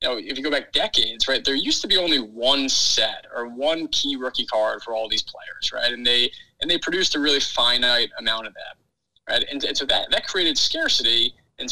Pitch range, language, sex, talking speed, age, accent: 120-135 Hz, English, male, 230 wpm, 30-49, American